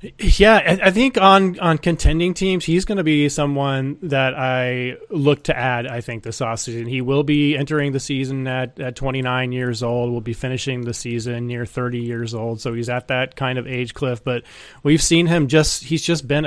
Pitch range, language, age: 120-145 Hz, English, 30-49